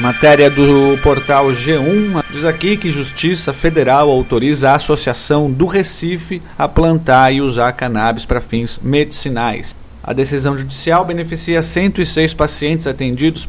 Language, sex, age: Portuguese, male, 40-59